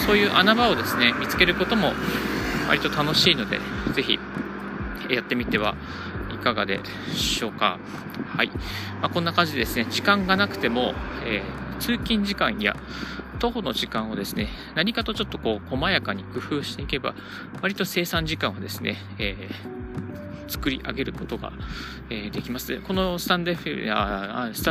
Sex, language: male, Japanese